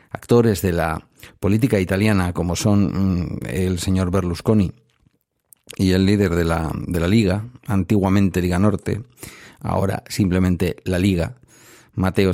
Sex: male